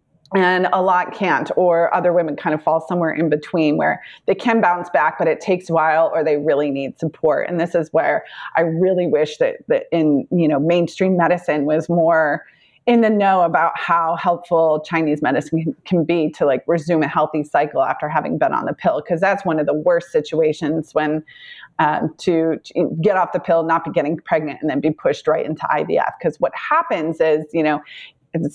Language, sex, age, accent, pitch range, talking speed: English, female, 30-49, American, 155-180 Hz, 205 wpm